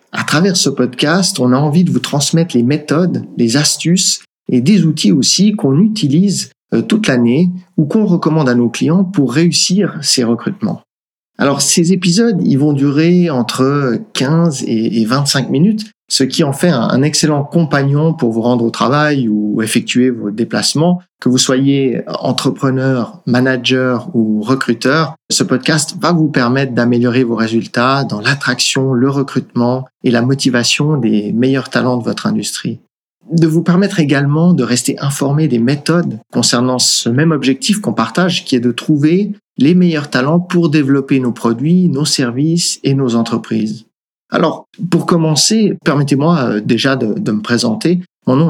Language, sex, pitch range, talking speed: French, male, 125-170 Hz, 160 wpm